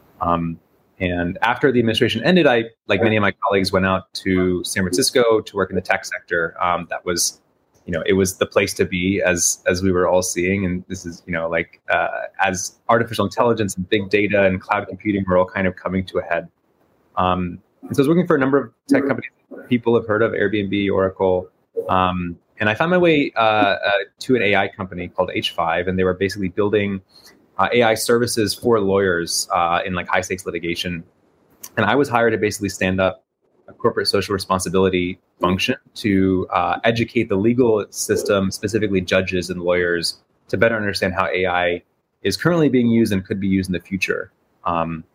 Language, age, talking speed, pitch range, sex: English, 30-49, 200 wpm, 90-110 Hz, male